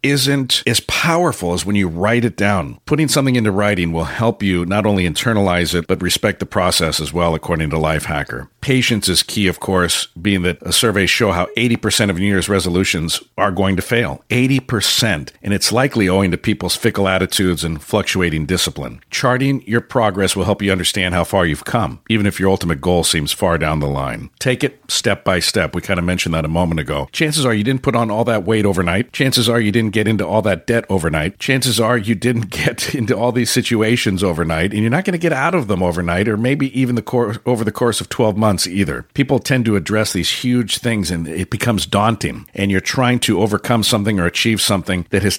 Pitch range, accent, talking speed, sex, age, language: 90-120 Hz, American, 225 wpm, male, 50-69, English